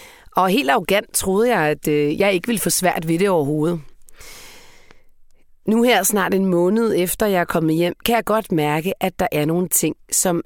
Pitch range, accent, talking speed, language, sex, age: 170-220 Hz, native, 195 wpm, Danish, female, 30-49